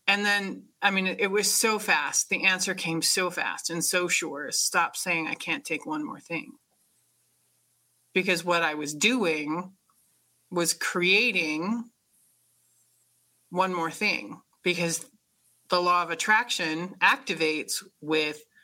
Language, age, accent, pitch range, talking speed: English, 30-49, American, 160-195 Hz, 130 wpm